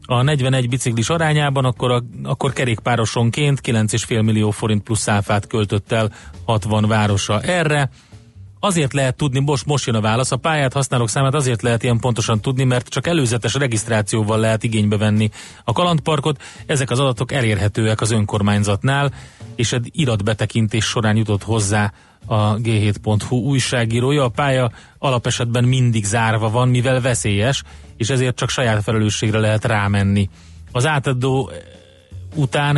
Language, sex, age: Hungarian, male, 30-49